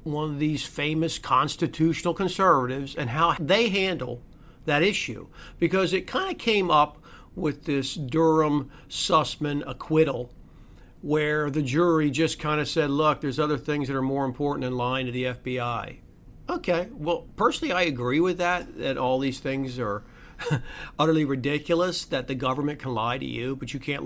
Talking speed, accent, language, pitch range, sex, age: 165 wpm, American, English, 130-160 Hz, male, 50-69